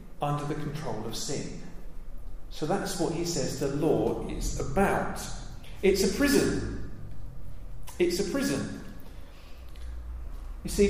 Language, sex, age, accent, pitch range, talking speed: English, male, 40-59, British, 130-195 Hz, 120 wpm